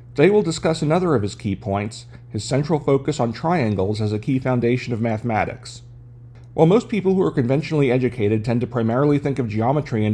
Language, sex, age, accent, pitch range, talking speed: English, male, 40-59, American, 115-145 Hz, 195 wpm